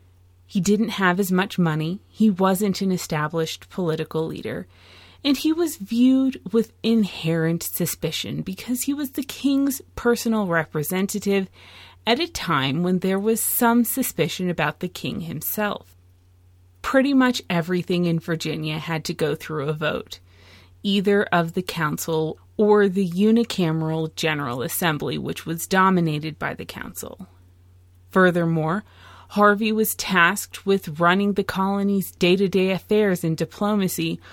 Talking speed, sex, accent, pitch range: 135 wpm, female, American, 155-210 Hz